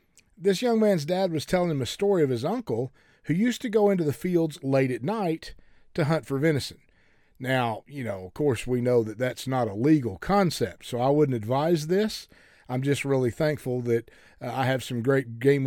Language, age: English, 40-59